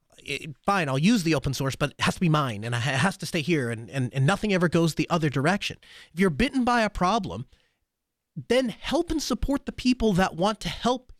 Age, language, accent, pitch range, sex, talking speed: 30-49, English, American, 155-205 Hz, male, 230 wpm